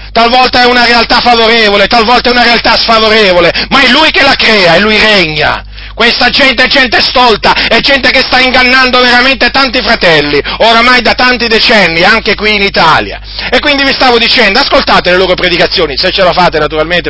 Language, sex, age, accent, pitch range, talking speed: Italian, male, 30-49, native, 220-275 Hz, 190 wpm